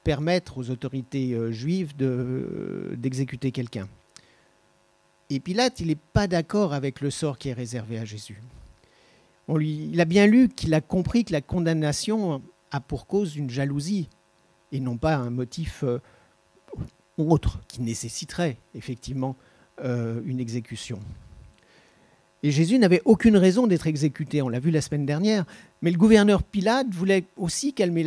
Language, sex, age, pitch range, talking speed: French, male, 50-69, 125-175 Hz, 155 wpm